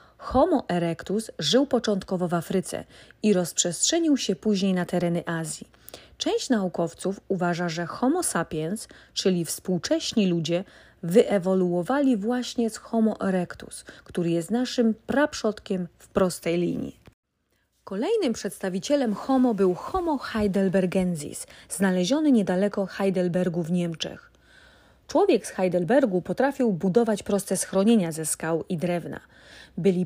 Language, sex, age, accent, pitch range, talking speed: Polish, female, 30-49, native, 175-230 Hz, 115 wpm